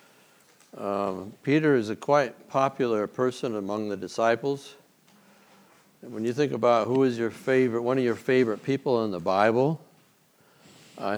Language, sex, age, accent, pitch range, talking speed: English, male, 60-79, American, 105-125 Hz, 140 wpm